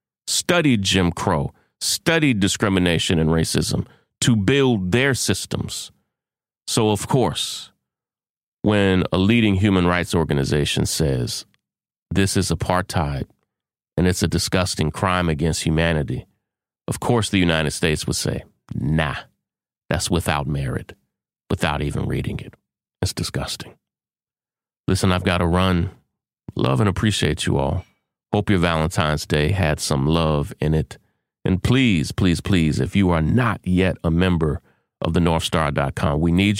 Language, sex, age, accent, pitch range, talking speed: English, male, 30-49, American, 80-105 Hz, 135 wpm